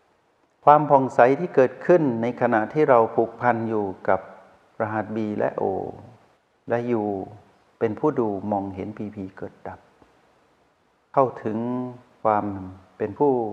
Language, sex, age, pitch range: Thai, male, 60-79, 100-125 Hz